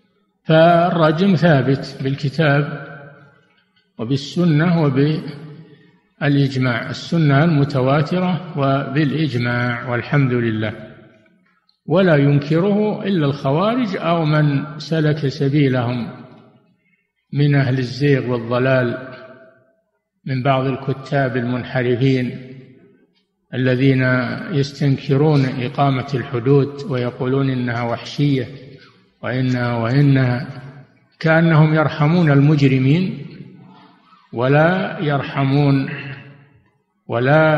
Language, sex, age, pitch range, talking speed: Arabic, male, 50-69, 130-150 Hz, 65 wpm